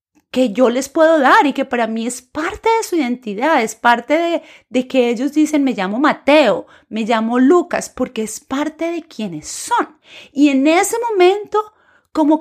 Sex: female